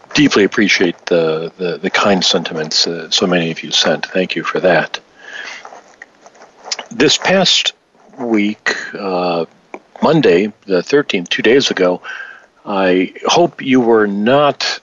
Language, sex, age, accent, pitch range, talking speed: English, male, 50-69, American, 90-115 Hz, 130 wpm